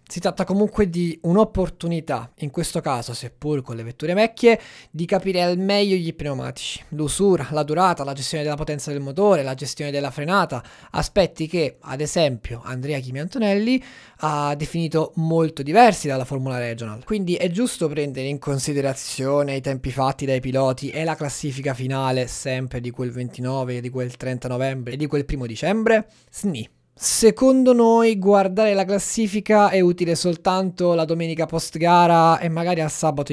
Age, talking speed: 20-39, 160 wpm